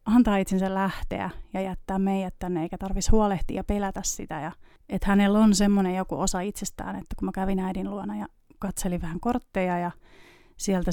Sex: female